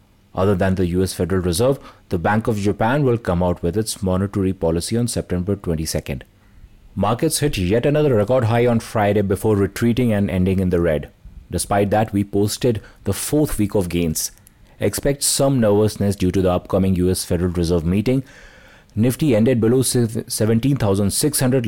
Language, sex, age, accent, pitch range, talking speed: English, male, 30-49, Indian, 95-125 Hz, 165 wpm